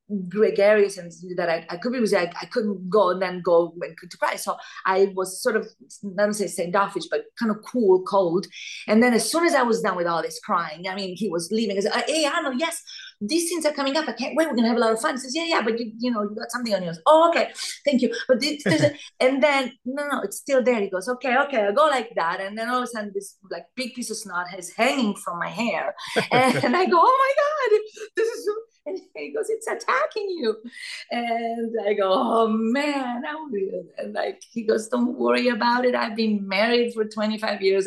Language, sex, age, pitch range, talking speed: English, female, 30-49, 190-265 Hz, 245 wpm